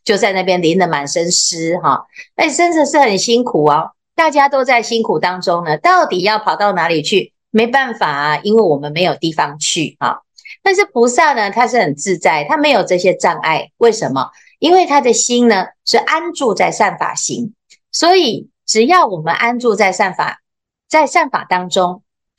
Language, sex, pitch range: Chinese, female, 180-290 Hz